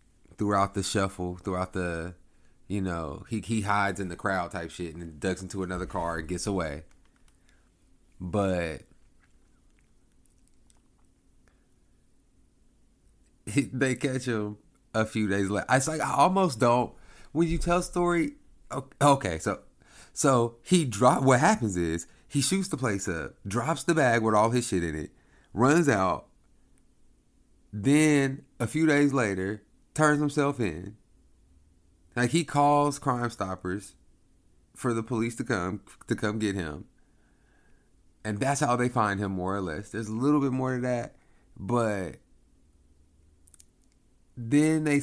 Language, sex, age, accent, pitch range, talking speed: English, male, 30-49, American, 90-130 Hz, 145 wpm